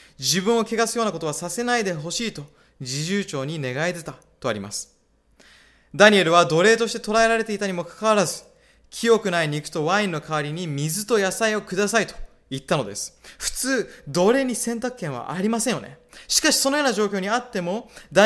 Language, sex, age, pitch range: Japanese, male, 20-39, 155-220 Hz